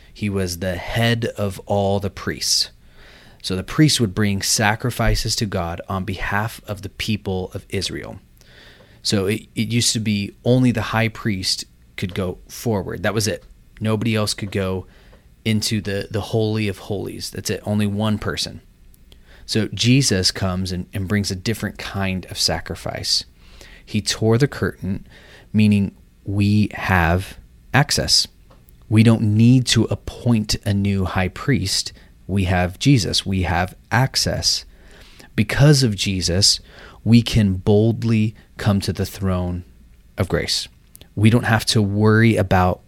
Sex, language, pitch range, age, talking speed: male, English, 95-110 Hz, 30-49, 150 wpm